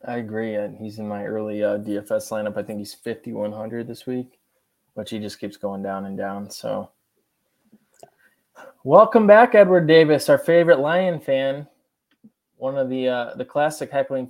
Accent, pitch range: American, 110-140 Hz